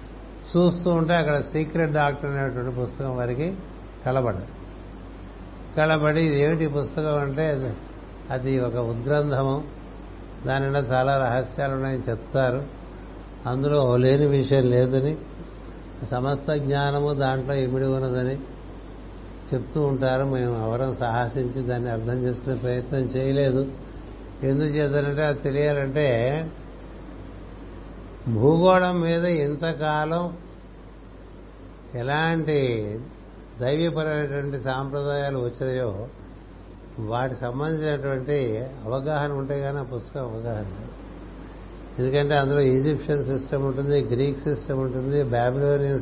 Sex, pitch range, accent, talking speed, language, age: male, 120-145 Hz, native, 90 wpm, Telugu, 60-79